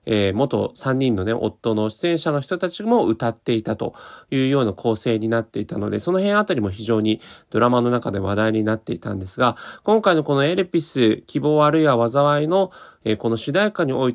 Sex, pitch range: male, 110-175 Hz